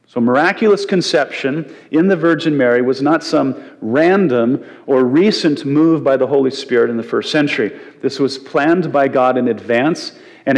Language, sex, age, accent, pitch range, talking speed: English, male, 40-59, American, 125-160 Hz, 170 wpm